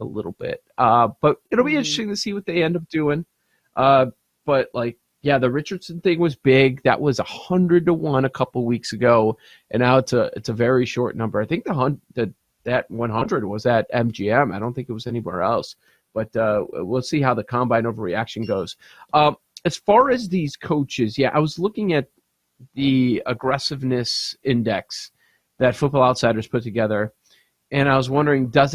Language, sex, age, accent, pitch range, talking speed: English, male, 30-49, American, 120-155 Hz, 195 wpm